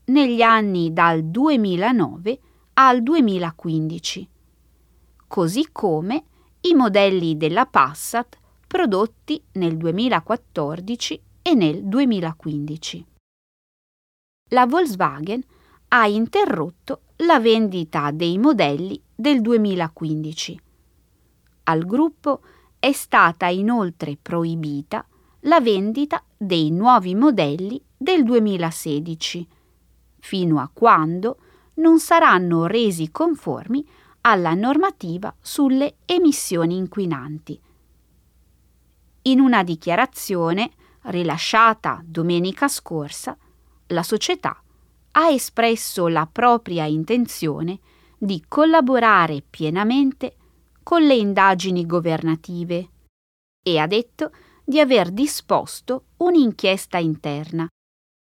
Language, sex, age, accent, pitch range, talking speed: Italian, female, 20-39, native, 160-255 Hz, 85 wpm